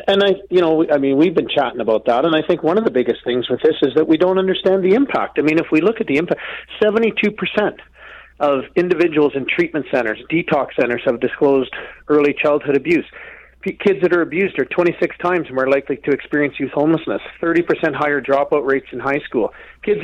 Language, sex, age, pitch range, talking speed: English, male, 40-59, 135-170 Hz, 210 wpm